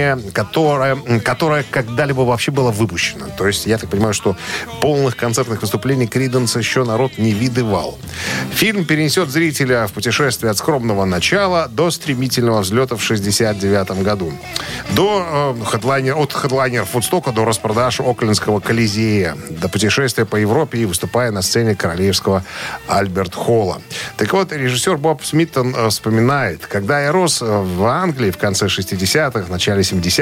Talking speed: 140 wpm